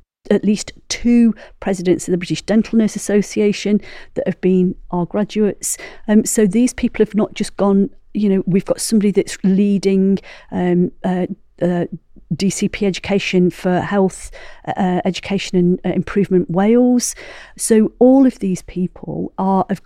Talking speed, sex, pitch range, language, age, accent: 150 wpm, female, 180-205 Hz, English, 50-69, British